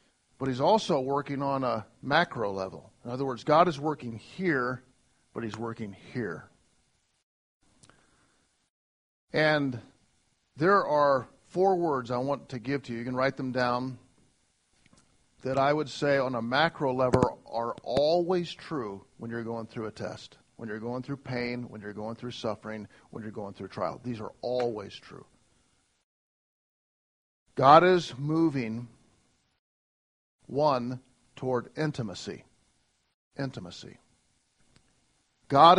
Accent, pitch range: American, 120-150 Hz